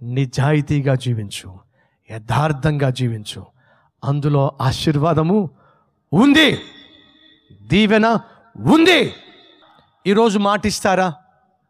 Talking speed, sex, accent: 55 wpm, male, native